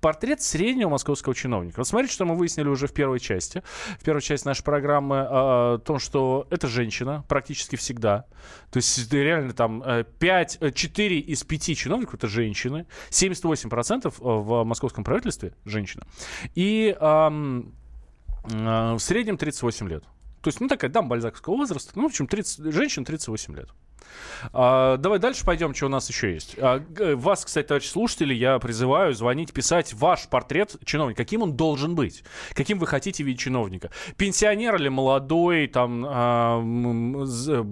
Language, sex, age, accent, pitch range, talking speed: Russian, male, 20-39, native, 115-155 Hz, 150 wpm